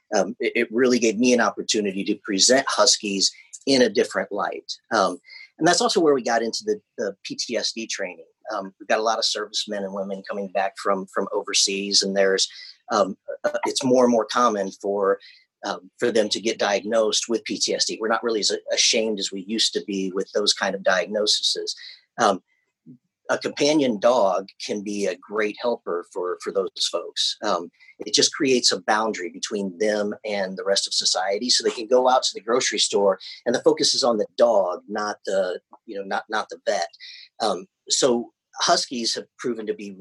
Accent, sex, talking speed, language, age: American, male, 195 wpm, English, 40-59